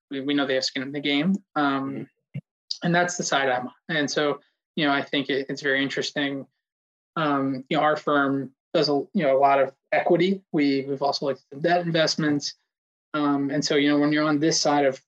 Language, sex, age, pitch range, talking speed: English, male, 20-39, 135-150 Hz, 225 wpm